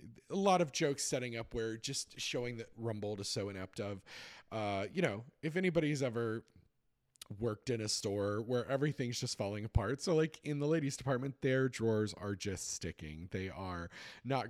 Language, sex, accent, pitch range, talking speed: English, male, American, 100-145 Hz, 180 wpm